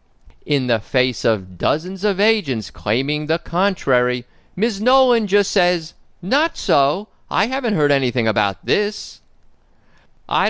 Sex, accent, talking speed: male, American, 130 wpm